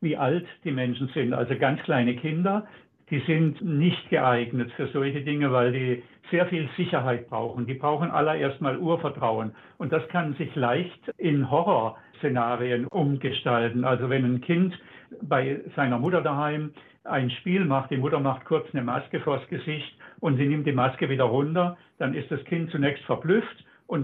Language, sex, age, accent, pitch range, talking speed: German, male, 60-79, German, 130-165 Hz, 170 wpm